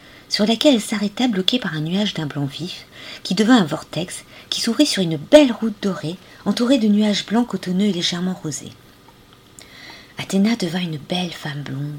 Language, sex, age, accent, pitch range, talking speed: French, female, 40-59, French, 155-220 Hz, 180 wpm